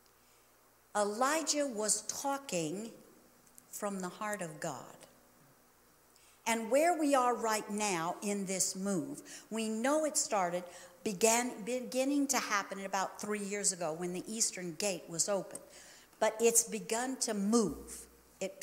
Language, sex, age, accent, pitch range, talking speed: English, female, 50-69, American, 195-240 Hz, 130 wpm